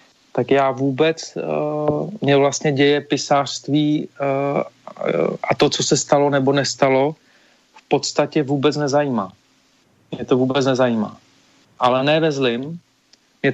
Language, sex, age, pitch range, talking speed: Slovak, male, 40-59, 130-145 Hz, 130 wpm